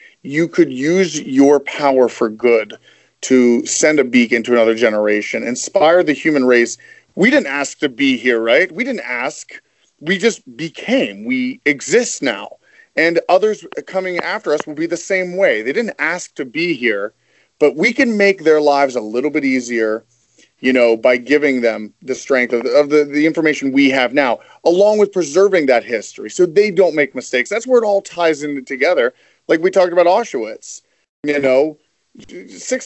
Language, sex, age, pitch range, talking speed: English, male, 30-49, 130-190 Hz, 185 wpm